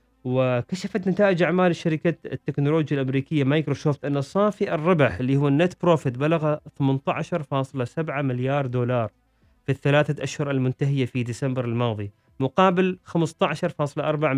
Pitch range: 130-155 Hz